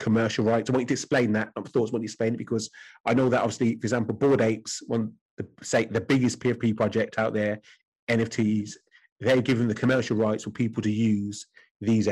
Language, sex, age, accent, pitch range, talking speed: English, male, 30-49, British, 110-125 Hz, 215 wpm